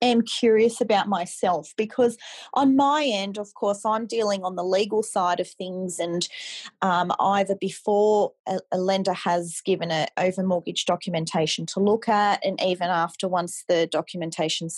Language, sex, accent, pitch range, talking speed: English, female, Australian, 180-215 Hz, 160 wpm